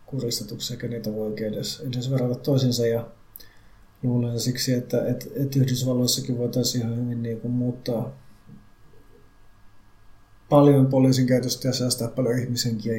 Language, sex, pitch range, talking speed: Finnish, male, 110-130 Hz, 125 wpm